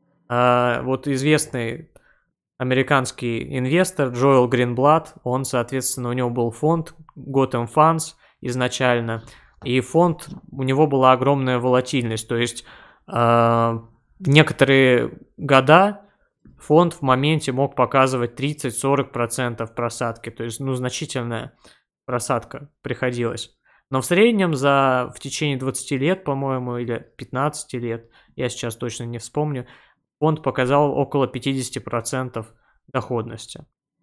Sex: male